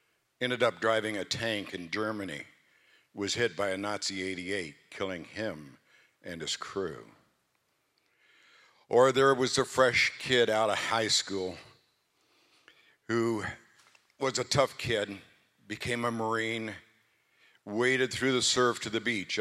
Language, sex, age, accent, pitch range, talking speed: English, male, 60-79, American, 95-115 Hz, 135 wpm